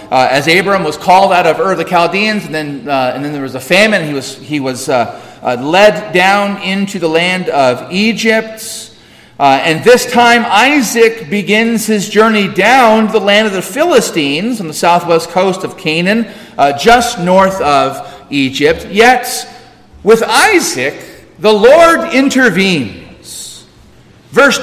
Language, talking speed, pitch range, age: English, 160 wpm, 170-235 Hz, 40-59